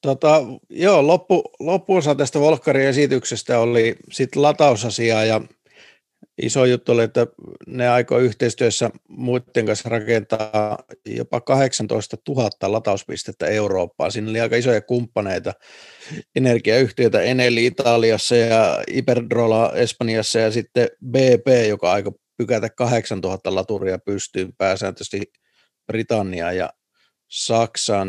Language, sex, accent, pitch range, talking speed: Finnish, male, native, 100-125 Hz, 110 wpm